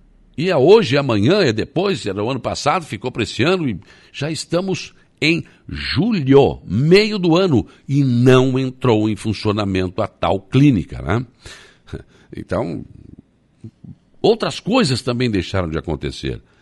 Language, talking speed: Portuguese, 135 wpm